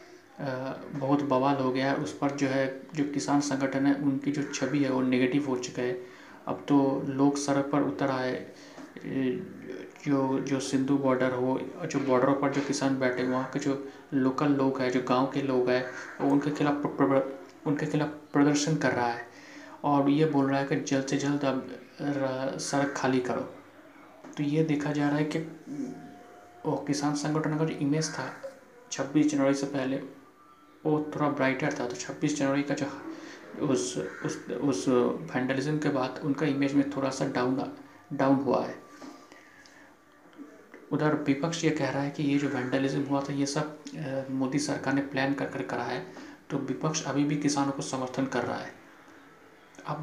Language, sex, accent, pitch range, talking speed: Hindi, male, native, 135-150 Hz, 175 wpm